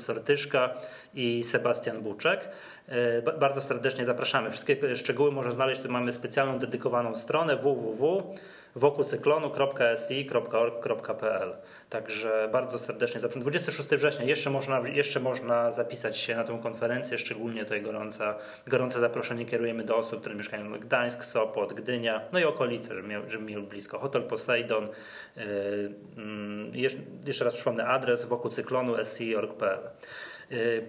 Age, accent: 20-39, native